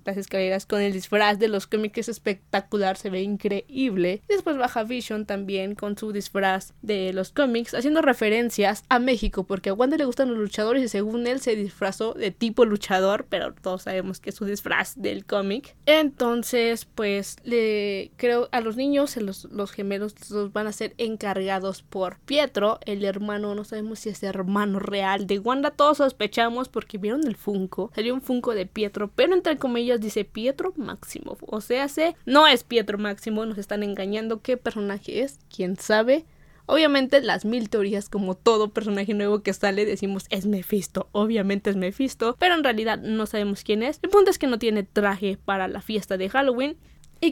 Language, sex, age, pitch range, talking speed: Spanish, female, 20-39, 200-250 Hz, 185 wpm